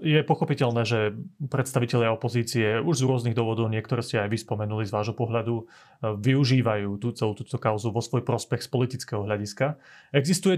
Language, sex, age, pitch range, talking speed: Slovak, male, 30-49, 120-150 Hz, 160 wpm